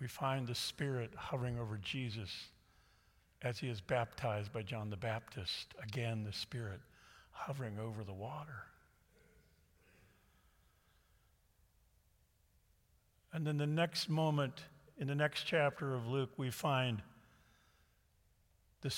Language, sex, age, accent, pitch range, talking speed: English, male, 50-69, American, 100-140 Hz, 115 wpm